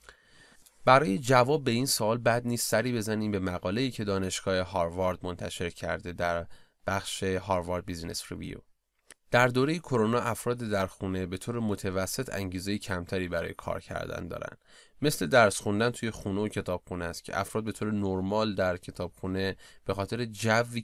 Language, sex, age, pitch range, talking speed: Persian, male, 20-39, 95-115 Hz, 155 wpm